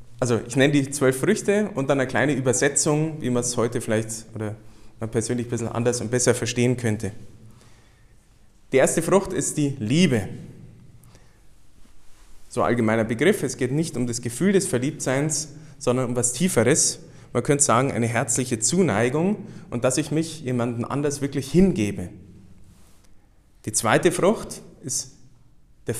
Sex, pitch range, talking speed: male, 115-145 Hz, 155 wpm